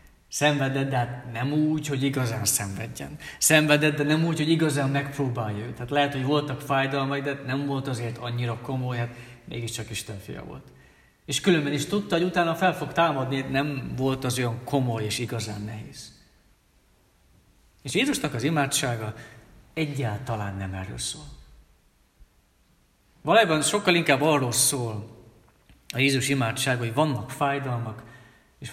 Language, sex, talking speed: Hungarian, male, 150 wpm